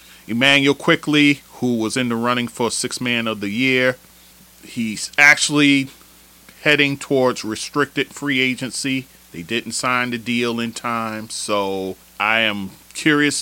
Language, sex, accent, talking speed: English, male, American, 140 wpm